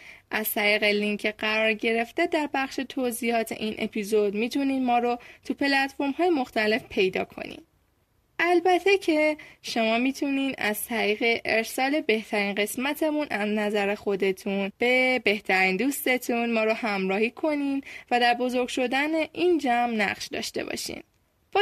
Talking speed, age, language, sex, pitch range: 135 wpm, 10-29, Persian, female, 215-285 Hz